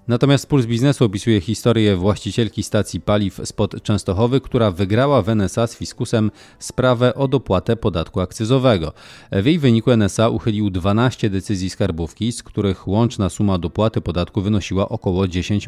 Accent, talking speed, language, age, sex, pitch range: native, 145 wpm, Polish, 30-49, male, 95-115 Hz